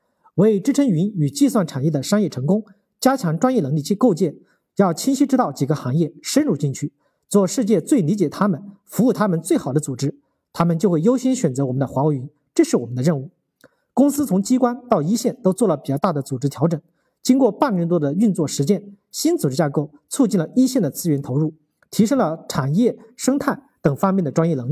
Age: 50-69